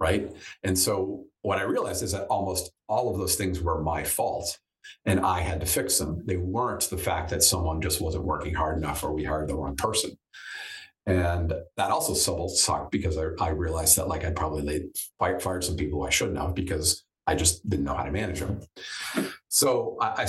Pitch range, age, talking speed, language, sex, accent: 85-100 Hz, 50-69, 200 wpm, English, male, American